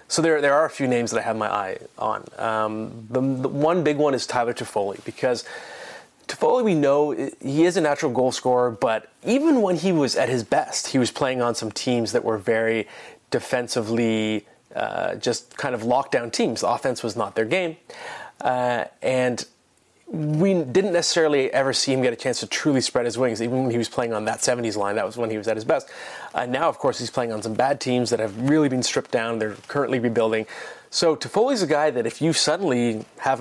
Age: 30-49